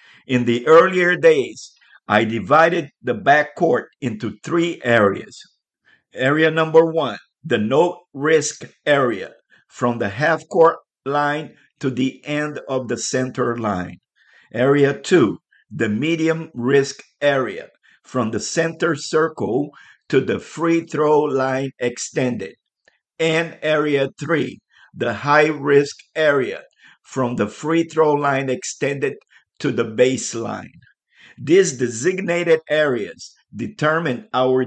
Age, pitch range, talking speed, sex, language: 50-69, 130-160 Hz, 105 wpm, male, English